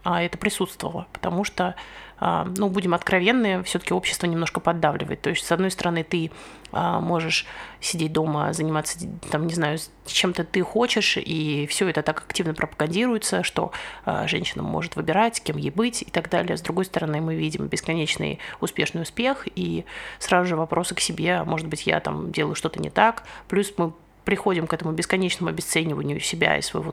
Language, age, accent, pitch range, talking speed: Russian, 30-49, native, 160-195 Hz, 170 wpm